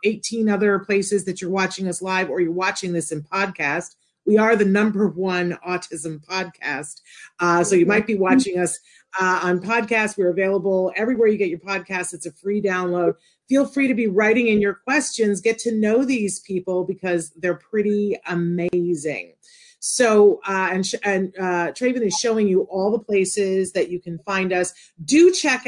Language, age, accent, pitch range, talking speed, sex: English, 40-59, American, 175-220 Hz, 185 wpm, female